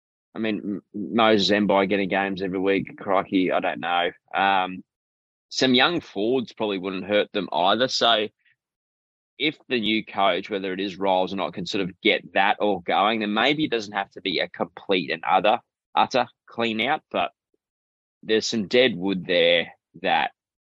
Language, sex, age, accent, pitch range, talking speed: English, male, 20-39, Australian, 95-105 Hz, 170 wpm